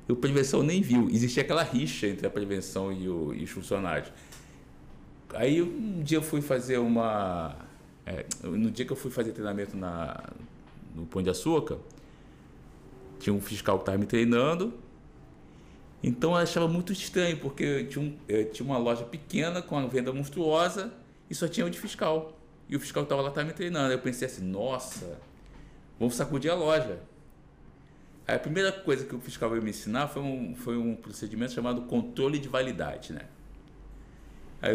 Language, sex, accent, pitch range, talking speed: Portuguese, male, Brazilian, 105-150 Hz, 175 wpm